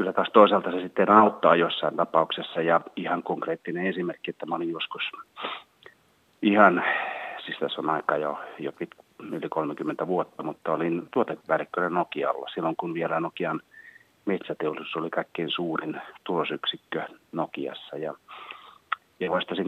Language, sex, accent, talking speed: Finnish, male, native, 130 wpm